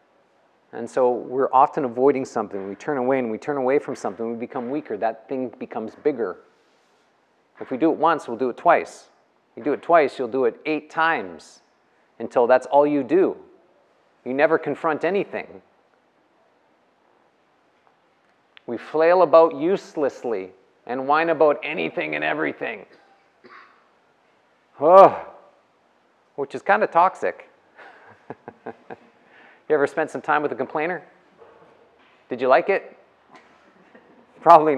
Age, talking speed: 40-59, 135 wpm